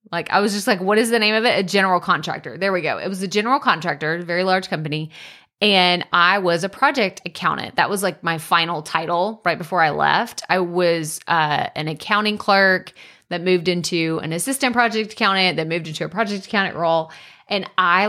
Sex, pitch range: female, 175-230 Hz